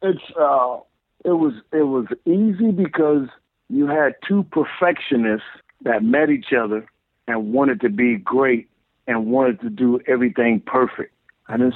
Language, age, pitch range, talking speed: English, 50-69, 110-140 Hz, 150 wpm